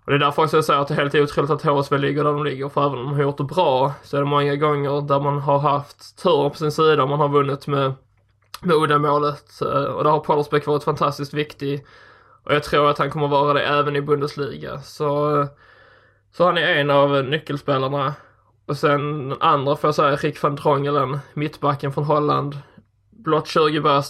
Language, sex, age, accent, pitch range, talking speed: English, male, 20-39, Swedish, 140-150 Hz, 210 wpm